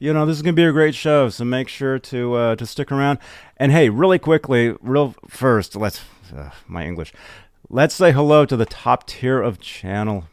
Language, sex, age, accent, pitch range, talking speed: English, male, 30-49, American, 95-145 Hz, 210 wpm